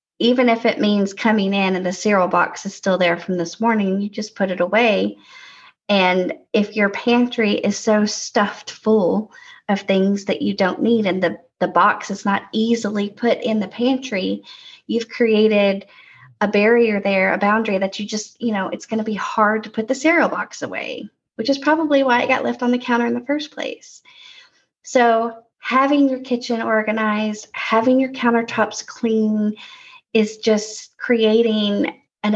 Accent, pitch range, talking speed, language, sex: American, 205-245 Hz, 180 wpm, English, female